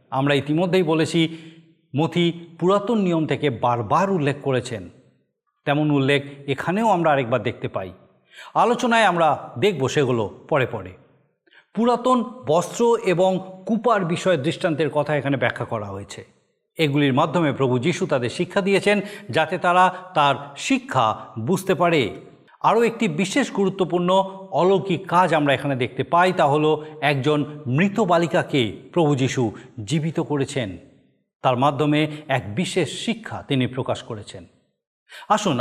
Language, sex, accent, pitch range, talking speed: Bengali, male, native, 135-180 Hz, 125 wpm